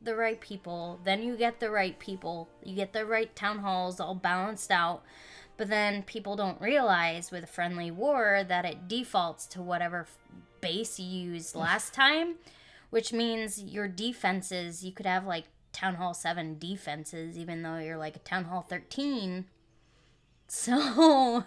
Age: 10-29